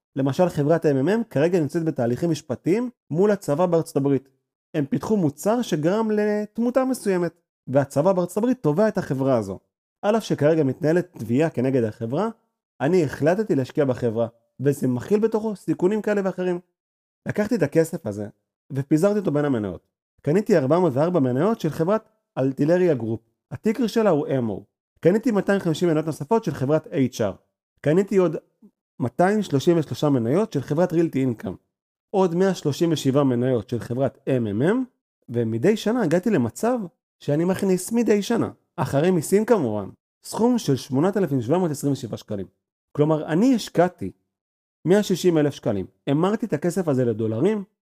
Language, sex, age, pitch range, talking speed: Hebrew, male, 30-49, 135-205 Hz, 135 wpm